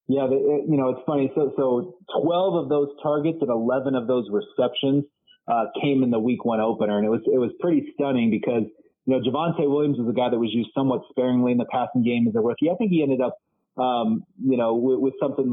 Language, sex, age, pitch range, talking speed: English, male, 30-49, 120-145 Hz, 240 wpm